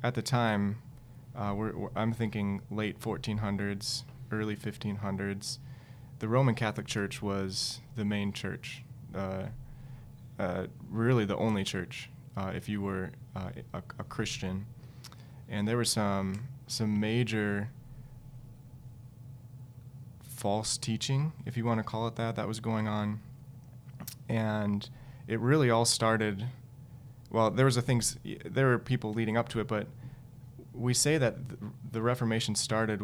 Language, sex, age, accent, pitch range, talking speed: English, male, 20-39, American, 105-130 Hz, 135 wpm